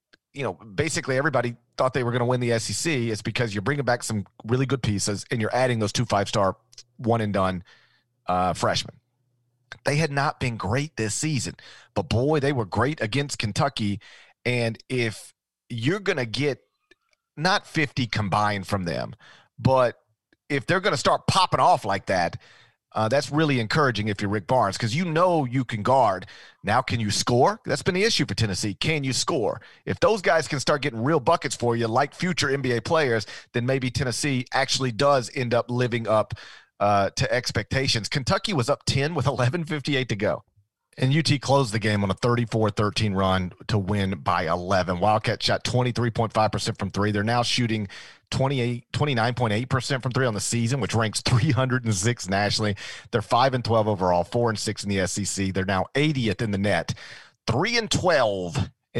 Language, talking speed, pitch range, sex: English, 175 wpm, 110-140 Hz, male